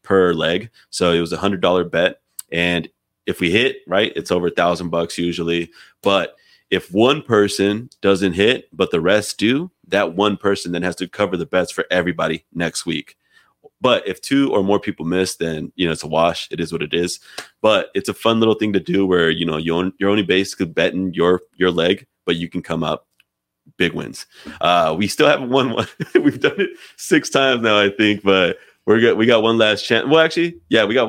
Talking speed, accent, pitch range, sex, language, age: 220 wpm, American, 85-110 Hz, male, English, 30-49